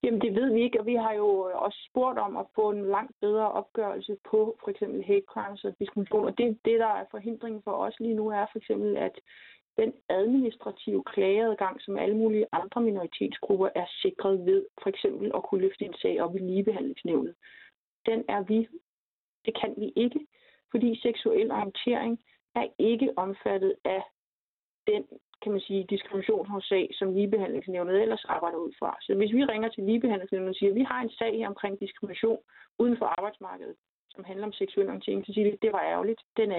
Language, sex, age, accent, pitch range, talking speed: Danish, female, 30-49, native, 200-240 Hz, 195 wpm